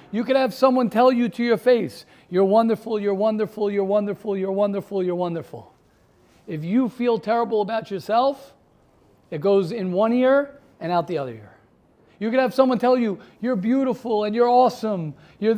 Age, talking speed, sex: 50-69, 180 wpm, male